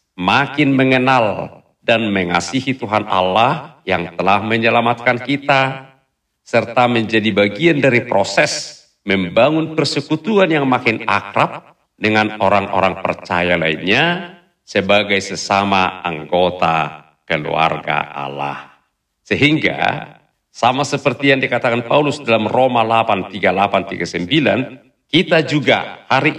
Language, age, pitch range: Indonesian, 50-69, 105-165 Hz